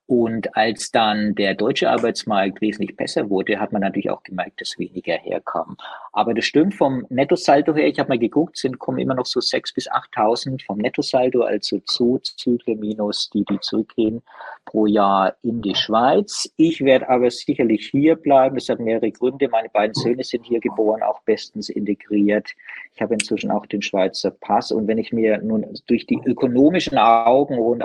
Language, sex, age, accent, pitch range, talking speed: German, male, 50-69, German, 105-125 Hz, 185 wpm